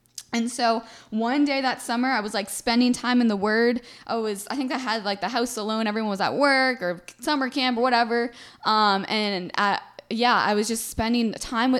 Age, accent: 10-29, American